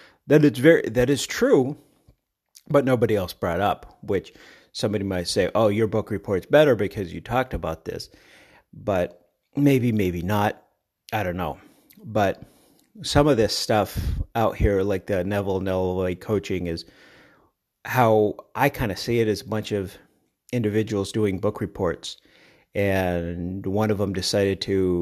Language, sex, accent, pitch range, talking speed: English, male, American, 95-110 Hz, 155 wpm